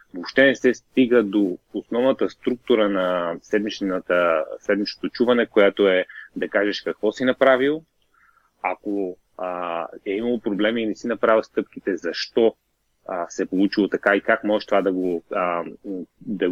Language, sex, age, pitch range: Bulgarian, male, 30-49, 100-125 Hz